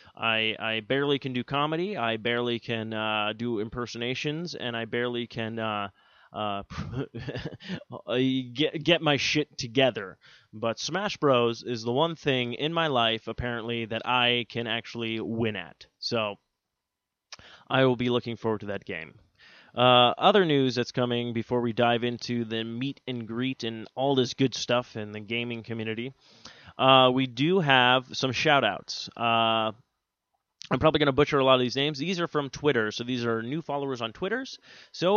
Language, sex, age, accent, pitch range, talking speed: English, male, 20-39, American, 115-145 Hz, 170 wpm